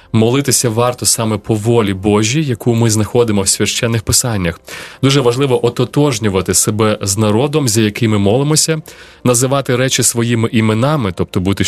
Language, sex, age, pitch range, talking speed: Ukrainian, male, 20-39, 105-130 Hz, 145 wpm